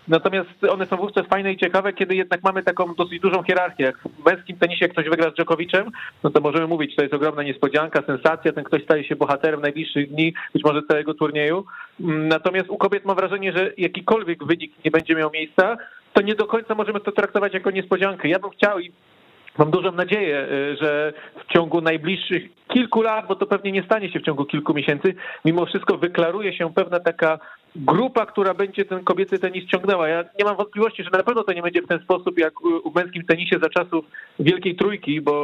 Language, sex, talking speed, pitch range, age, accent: Polish, male, 205 wpm, 165-200 Hz, 40-59, native